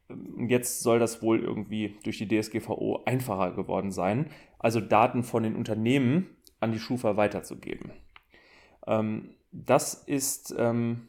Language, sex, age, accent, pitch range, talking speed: German, male, 30-49, German, 105-130 Hz, 120 wpm